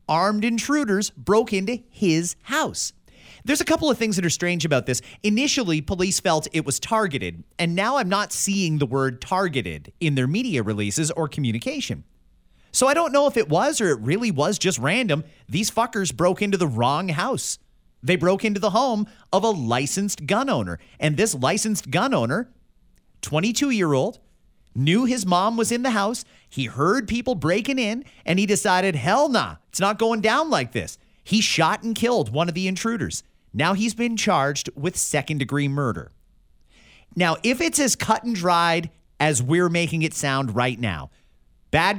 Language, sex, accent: English, male, American